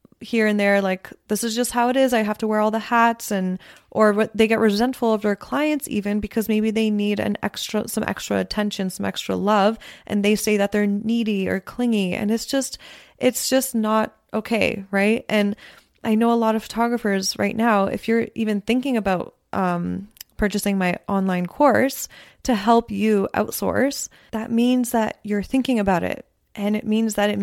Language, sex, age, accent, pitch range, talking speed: English, female, 20-39, American, 205-235 Hz, 195 wpm